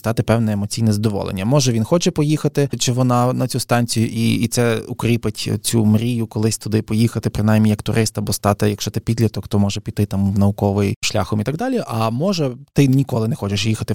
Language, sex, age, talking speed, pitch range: Ukrainian, male, 20-39, 200 wpm, 110-135 Hz